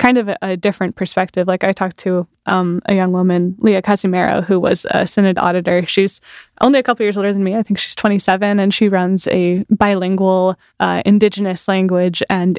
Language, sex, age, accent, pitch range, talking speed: English, female, 10-29, American, 180-205 Hz, 195 wpm